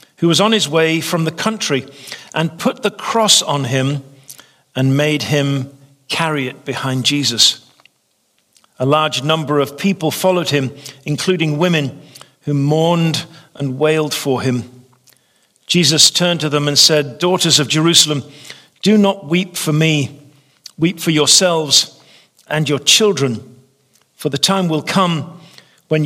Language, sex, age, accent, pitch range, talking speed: English, male, 50-69, British, 140-165 Hz, 145 wpm